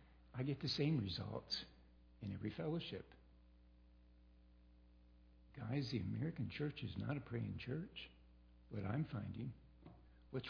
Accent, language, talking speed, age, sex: American, English, 120 wpm, 60-79, male